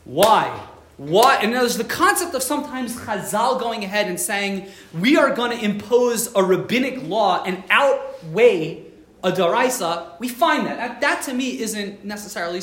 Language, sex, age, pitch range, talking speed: English, male, 30-49, 175-245 Hz, 160 wpm